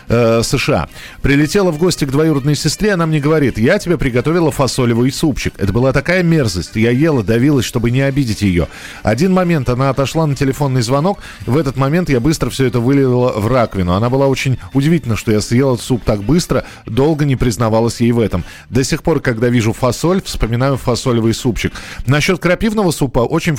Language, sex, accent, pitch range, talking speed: Russian, male, native, 115-155 Hz, 185 wpm